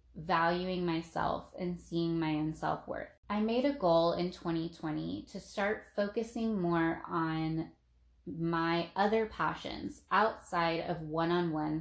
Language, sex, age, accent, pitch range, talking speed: English, female, 20-39, American, 160-190 Hz, 120 wpm